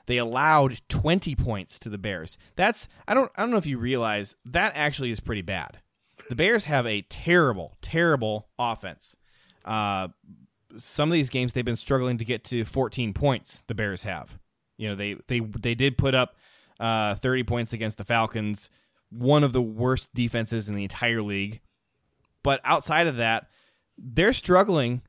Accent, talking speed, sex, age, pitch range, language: American, 175 wpm, male, 20-39, 110-140 Hz, English